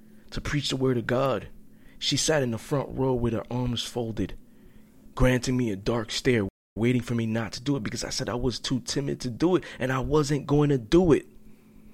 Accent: American